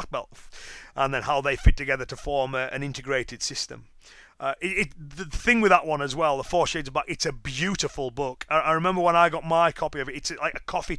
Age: 30-49